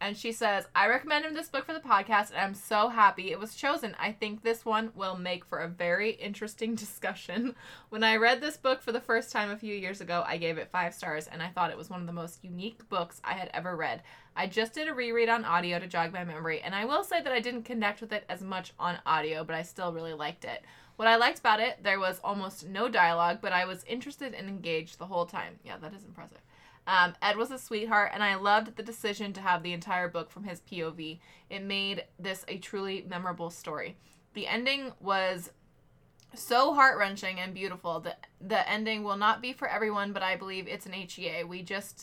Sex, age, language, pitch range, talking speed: female, 20-39, English, 175-225 Hz, 235 wpm